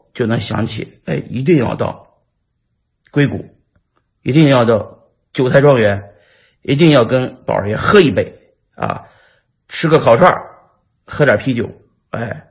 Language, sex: Chinese, male